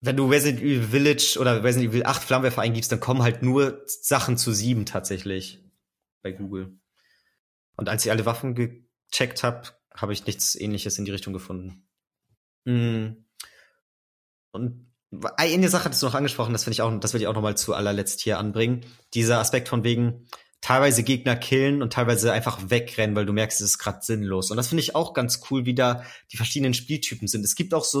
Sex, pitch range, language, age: male, 110-135 Hz, German, 30-49